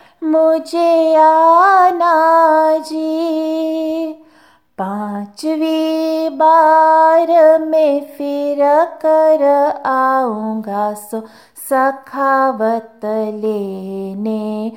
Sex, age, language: female, 30-49, Italian